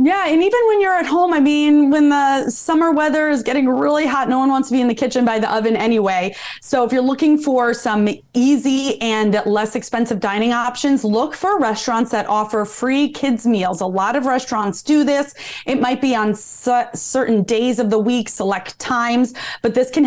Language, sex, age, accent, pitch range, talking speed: English, female, 30-49, American, 210-260 Hz, 205 wpm